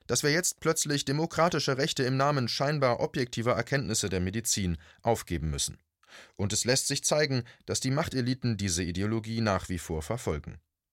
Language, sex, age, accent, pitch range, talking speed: German, male, 30-49, German, 100-135 Hz, 160 wpm